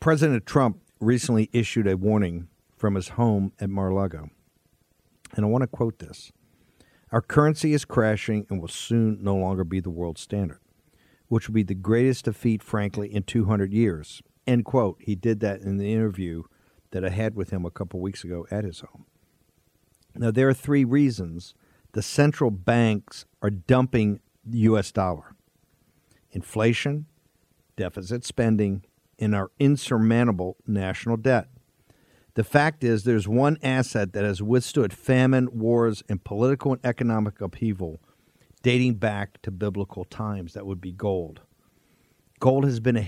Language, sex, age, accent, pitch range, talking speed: English, male, 50-69, American, 100-125 Hz, 155 wpm